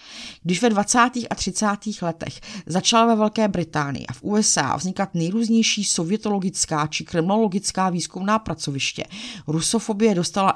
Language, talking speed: Czech, 125 wpm